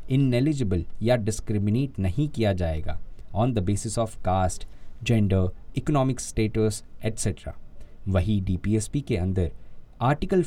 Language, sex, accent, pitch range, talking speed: Hindi, male, native, 95-135 Hz, 130 wpm